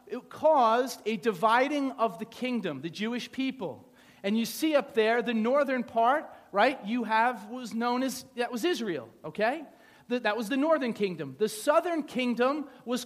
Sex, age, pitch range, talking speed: male, 40-59, 205-260 Hz, 170 wpm